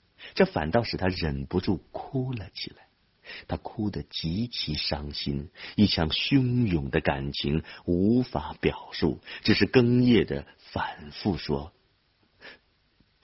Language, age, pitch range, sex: Chinese, 50-69, 75-120 Hz, male